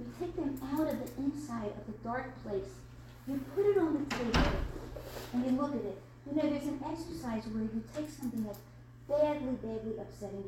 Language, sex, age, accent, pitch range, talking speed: English, female, 50-69, American, 205-290 Hz, 200 wpm